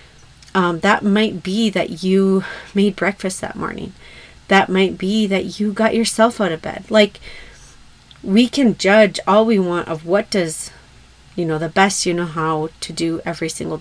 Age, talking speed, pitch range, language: 30-49, 180 wpm, 165-210 Hz, English